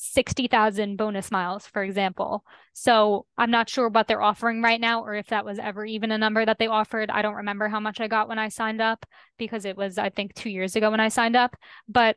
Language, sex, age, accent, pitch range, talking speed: English, female, 10-29, American, 210-245 Hz, 240 wpm